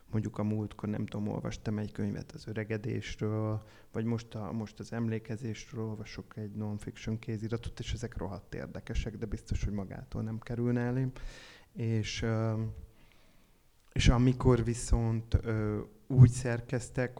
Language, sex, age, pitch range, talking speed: Hungarian, male, 30-49, 105-115 Hz, 130 wpm